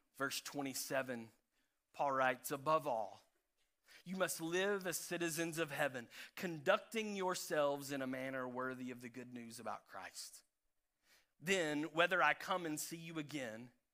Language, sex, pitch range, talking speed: English, male, 115-150 Hz, 140 wpm